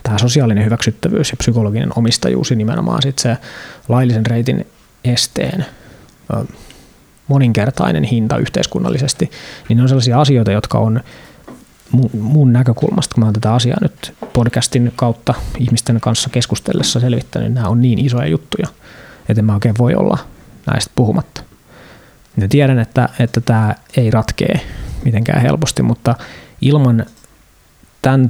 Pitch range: 110-130 Hz